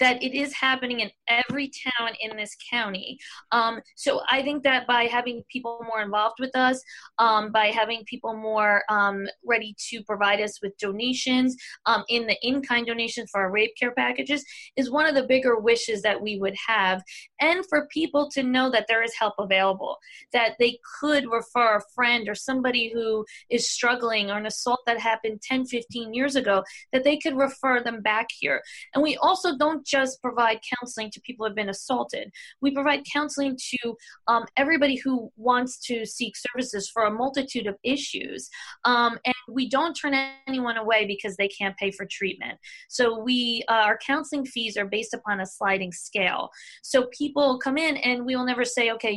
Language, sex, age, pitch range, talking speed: English, female, 20-39, 215-255 Hz, 190 wpm